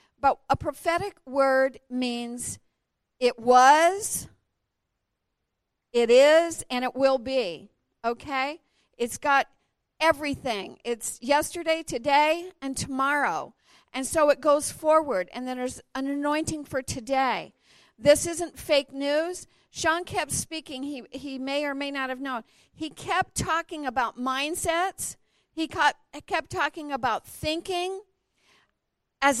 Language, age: English, 50-69